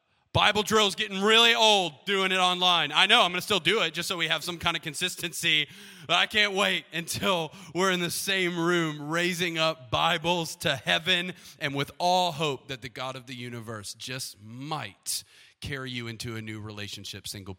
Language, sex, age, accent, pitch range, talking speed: English, male, 30-49, American, 130-175 Hz, 200 wpm